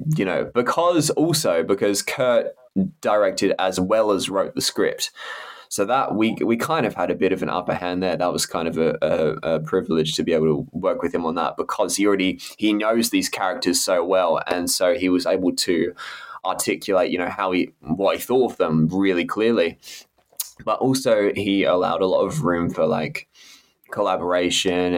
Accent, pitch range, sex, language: Australian, 85-105 Hz, male, English